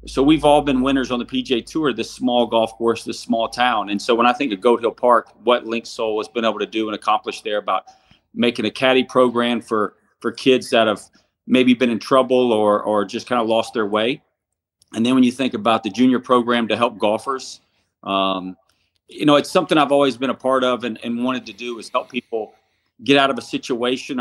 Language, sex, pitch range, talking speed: English, male, 110-130 Hz, 235 wpm